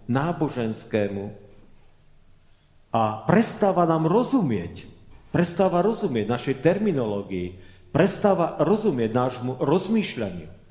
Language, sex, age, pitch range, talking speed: Czech, male, 40-59, 120-175 Hz, 75 wpm